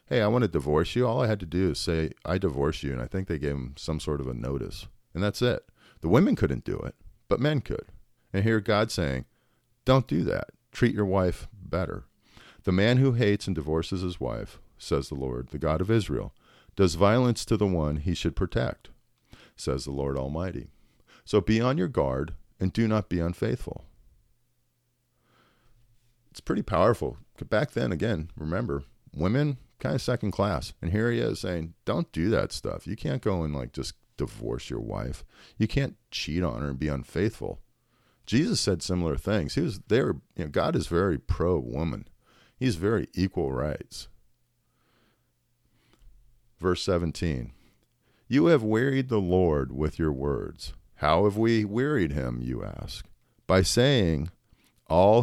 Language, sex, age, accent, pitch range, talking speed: English, male, 40-59, American, 75-115 Hz, 175 wpm